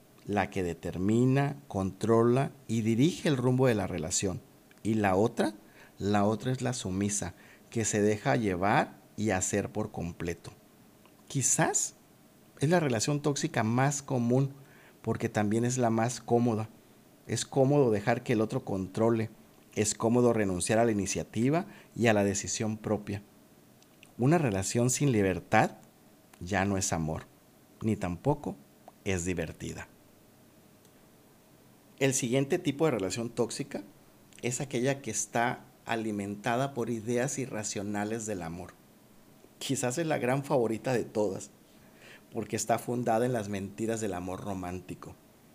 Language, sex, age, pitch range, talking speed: Spanish, male, 50-69, 100-125 Hz, 135 wpm